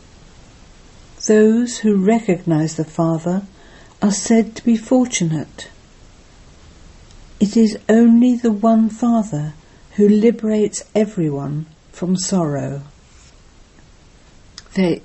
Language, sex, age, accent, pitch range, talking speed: English, female, 60-79, British, 155-200 Hz, 90 wpm